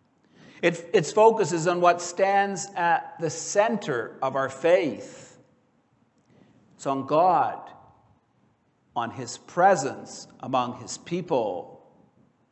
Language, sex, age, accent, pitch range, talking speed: English, male, 60-79, American, 165-215 Hz, 100 wpm